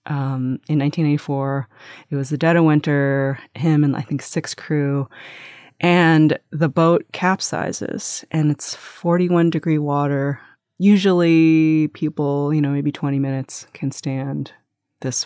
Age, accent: 30-49, American